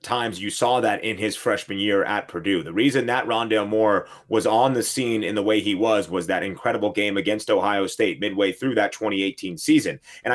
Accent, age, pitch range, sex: American, 30-49, 115-155 Hz, male